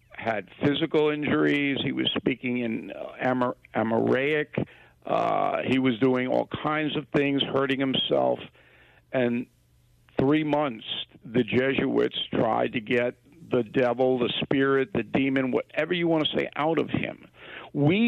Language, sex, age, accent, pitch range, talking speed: English, male, 50-69, American, 125-150 Hz, 145 wpm